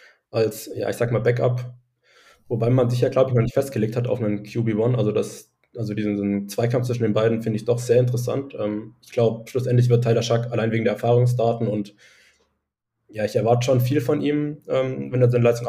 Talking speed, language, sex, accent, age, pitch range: 220 wpm, German, male, German, 20-39, 115-130 Hz